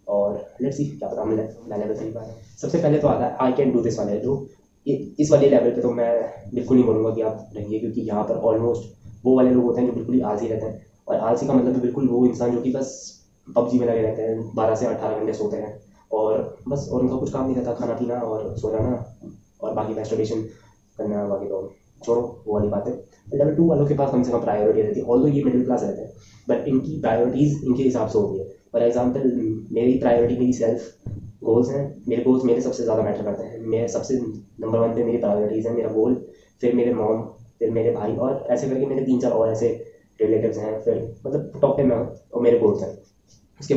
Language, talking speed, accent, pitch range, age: Hindi, 230 wpm, native, 110-130 Hz, 20-39